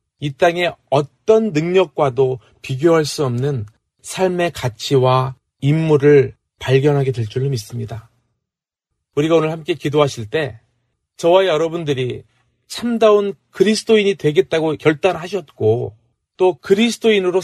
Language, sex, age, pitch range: Korean, male, 30-49, 130-180 Hz